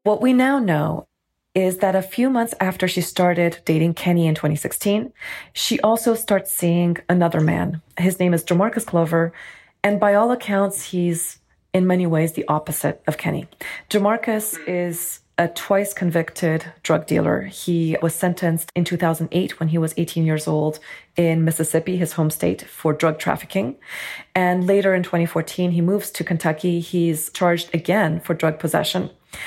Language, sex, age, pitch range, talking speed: English, female, 30-49, 170-210 Hz, 160 wpm